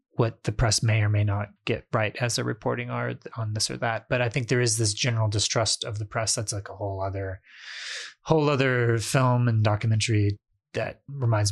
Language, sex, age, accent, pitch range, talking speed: English, male, 30-49, American, 110-125 Hz, 210 wpm